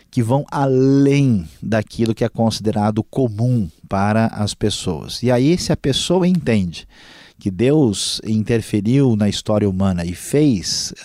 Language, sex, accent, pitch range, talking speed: Portuguese, male, Brazilian, 100-125 Hz, 135 wpm